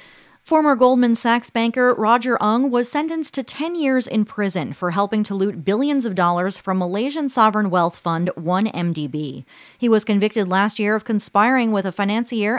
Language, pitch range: English, 180-235 Hz